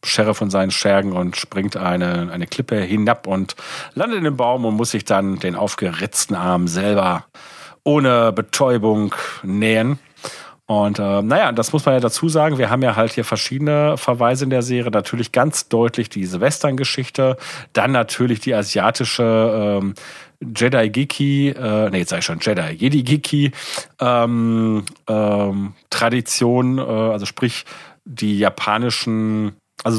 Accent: German